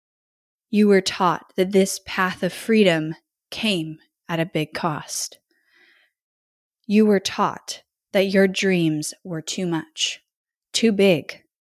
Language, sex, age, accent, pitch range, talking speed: English, female, 20-39, American, 170-205 Hz, 125 wpm